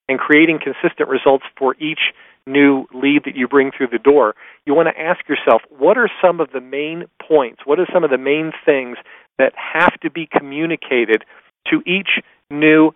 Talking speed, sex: 190 wpm, male